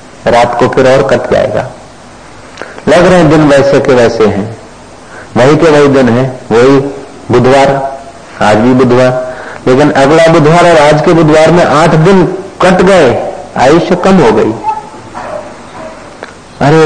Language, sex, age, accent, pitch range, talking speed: Hindi, male, 50-69, native, 130-165 Hz, 140 wpm